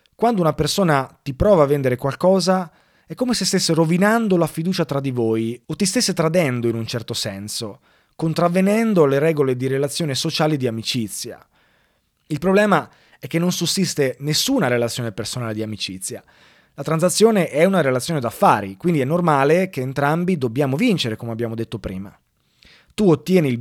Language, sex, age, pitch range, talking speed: Italian, male, 20-39, 125-175 Hz, 165 wpm